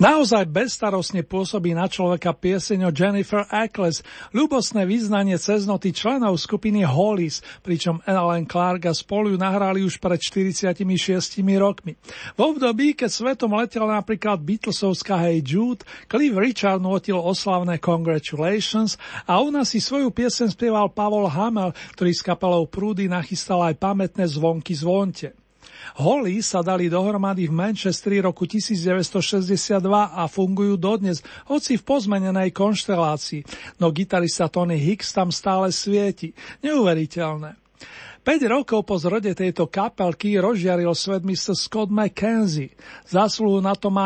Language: Slovak